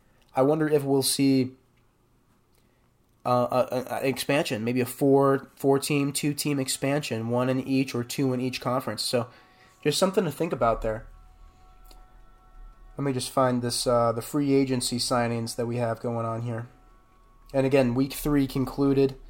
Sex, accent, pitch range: male, American, 120-140 Hz